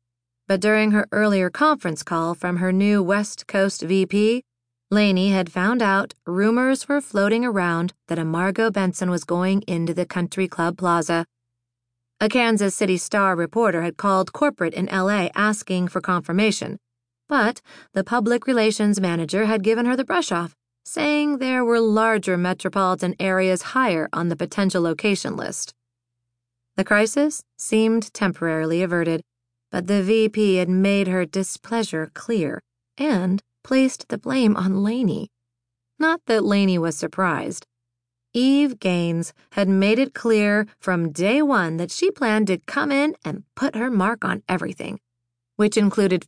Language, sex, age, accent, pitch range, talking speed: English, female, 30-49, American, 170-220 Hz, 145 wpm